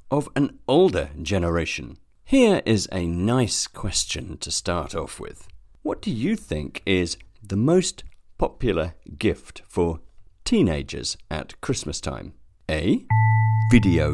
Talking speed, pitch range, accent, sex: 125 wpm, 80-110 Hz, British, male